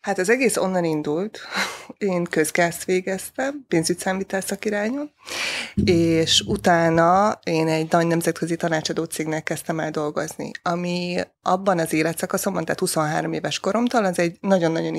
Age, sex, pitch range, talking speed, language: 20-39, female, 160-195 Hz, 130 wpm, Hungarian